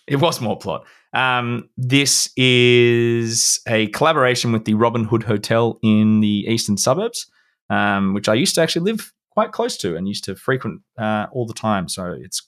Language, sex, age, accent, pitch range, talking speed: English, male, 20-39, Australian, 100-120 Hz, 185 wpm